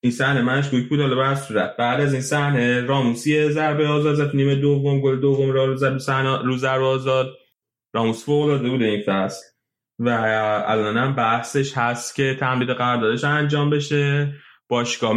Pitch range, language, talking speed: 115-135 Hz, Persian, 160 wpm